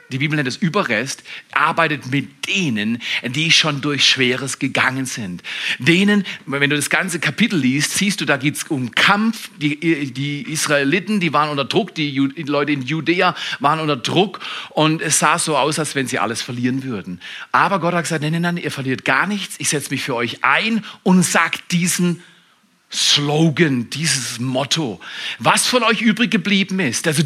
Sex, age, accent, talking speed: male, 40-59, German, 185 wpm